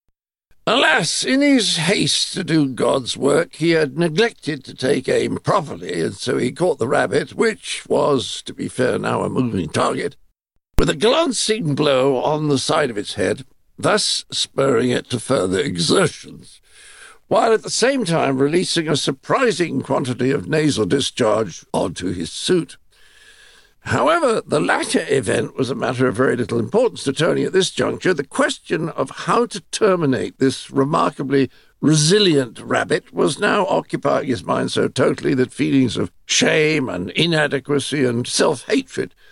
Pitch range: 135-200 Hz